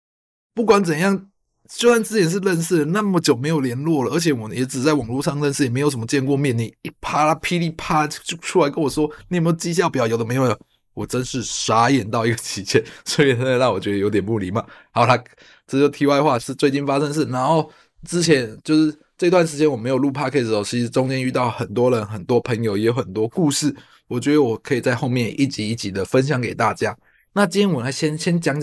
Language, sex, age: Chinese, male, 20-39